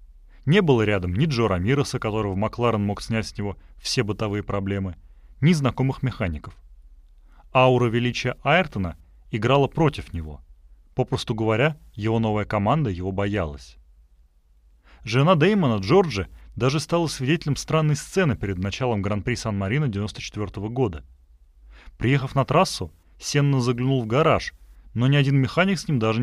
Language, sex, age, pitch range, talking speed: Russian, male, 30-49, 85-135 Hz, 135 wpm